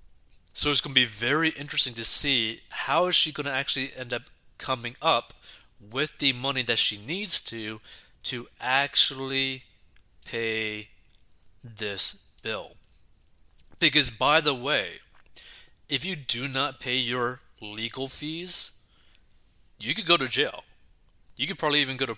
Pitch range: 105-135 Hz